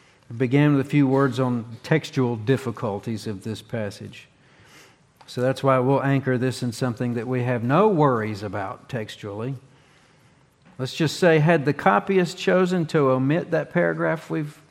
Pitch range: 120-145 Hz